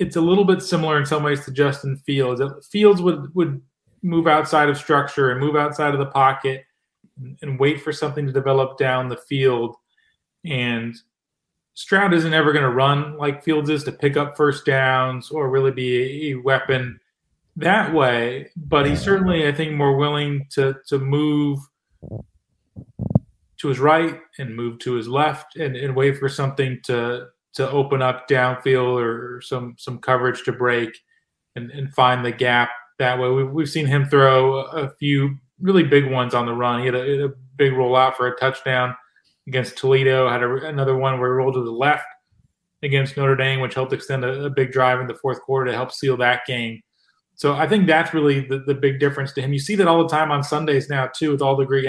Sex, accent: male, American